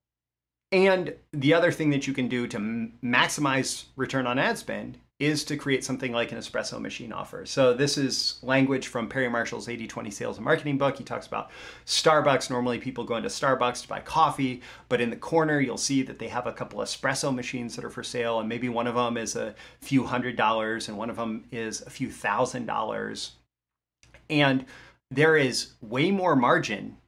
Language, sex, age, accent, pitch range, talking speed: English, male, 30-49, American, 115-140 Hz, 195 wpm